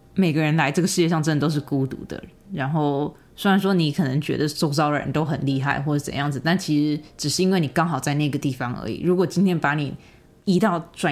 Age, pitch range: 20-39, 145-185 Hz